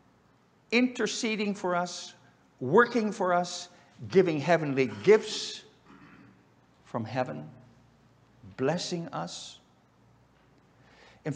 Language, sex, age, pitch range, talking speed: English, male, 50-69, 130-155 Hz, 75 wpm